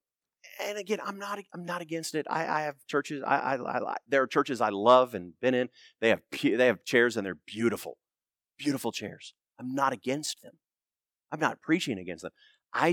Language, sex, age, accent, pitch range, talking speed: English, male, 40-59, American, 115-185 Hz, 200 wpm